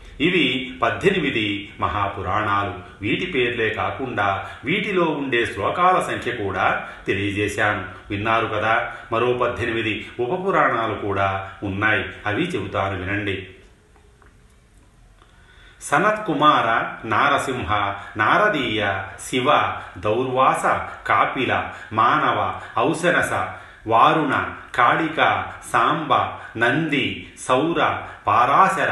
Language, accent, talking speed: Telugu, native, 75 wpm